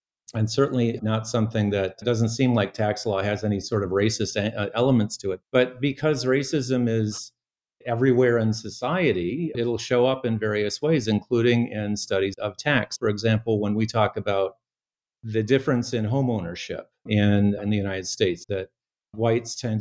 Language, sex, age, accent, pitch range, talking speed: English, male, 50-69, American, 105-120 Hz, 165 wpm